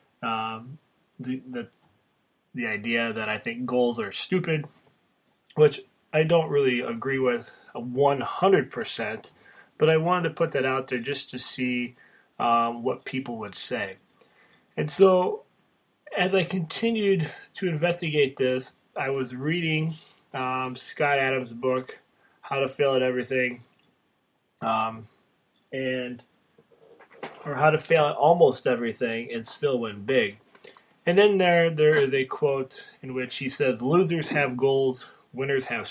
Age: 20-39